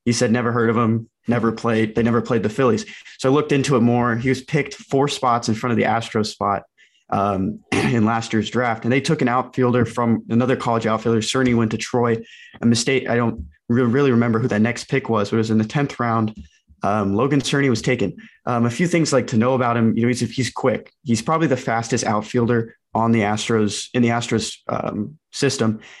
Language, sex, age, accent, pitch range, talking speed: English, male, 20-39, American, 110-130 Hz, 230 wpm